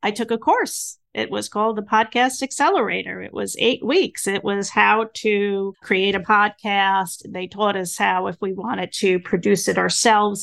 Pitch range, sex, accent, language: 190-235 Hz, female, American, English